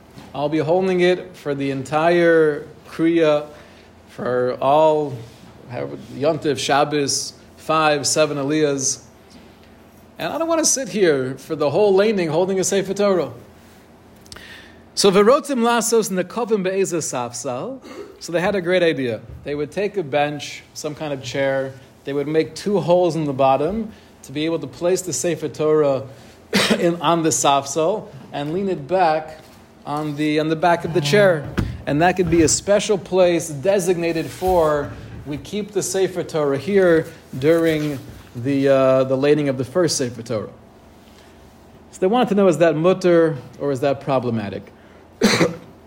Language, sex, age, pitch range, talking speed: English, male, 30-49, 135-180 Hz, 150 wpm